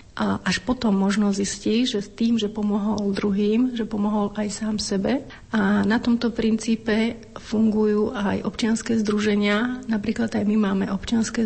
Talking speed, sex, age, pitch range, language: 145 wpm, female, 40-59, 210-230 Hz, Slovak